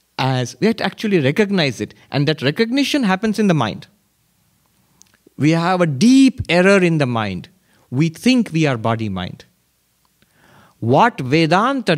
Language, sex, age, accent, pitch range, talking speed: English, male, 50-69, Indian, 130-215 Hz, 145 wpm